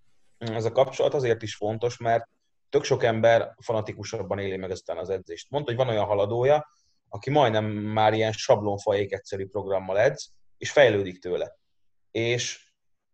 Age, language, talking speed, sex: 30-49, Hungarian, 150 wpm, male